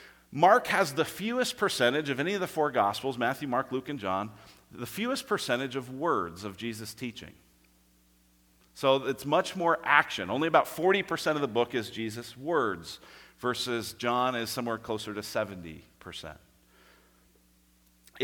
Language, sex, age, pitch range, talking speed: English, male, 40-59, 110-160 Hz, 150 wpm